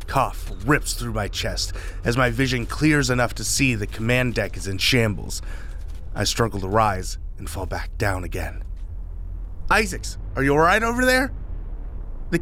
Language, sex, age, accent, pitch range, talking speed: English, male, 30-49, American, 85-140 Hz, 165 wpm